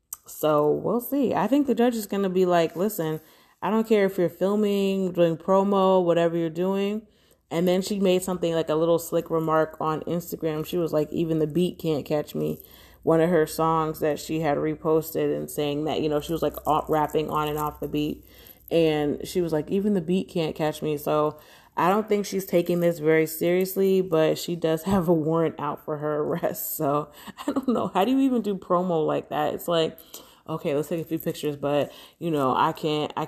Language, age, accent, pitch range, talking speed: English, 20-39, American, 155-185 Hz, 220 wpm